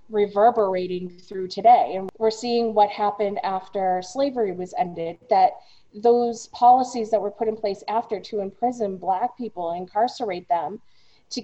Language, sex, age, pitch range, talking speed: English, female, 30-49, 190-240 Hz, 145 wpm